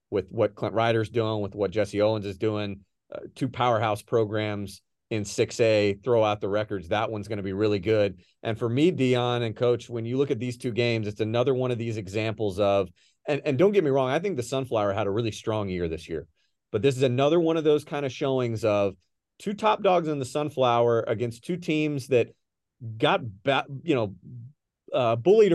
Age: 40-59